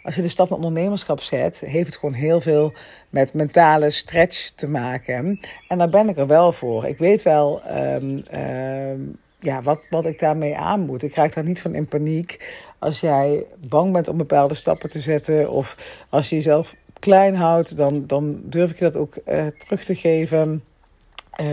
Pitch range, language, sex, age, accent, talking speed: 145-175 Hz, Dutch, female, 50-69, Dutch, 195 wpm